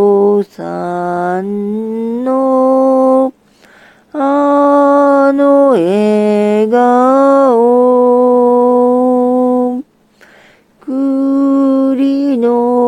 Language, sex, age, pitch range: Japanese, female, 40-59, 175-250 Hz